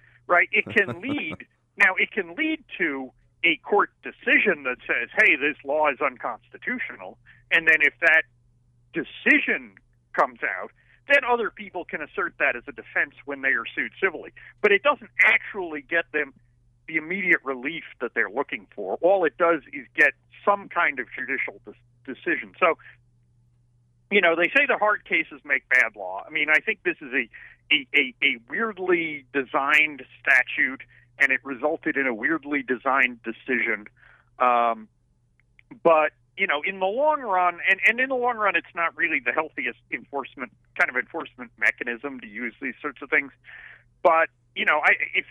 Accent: American